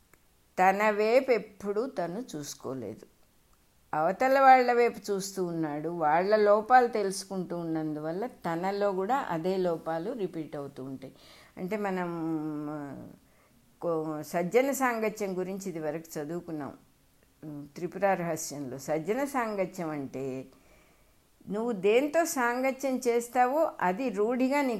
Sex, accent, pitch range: female, Indian, 165-240 Hz